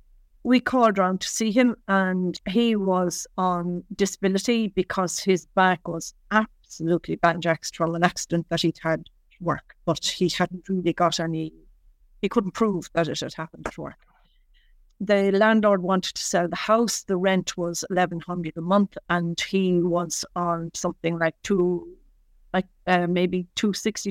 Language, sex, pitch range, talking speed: English, female, 170-195 Hz, 160 wpm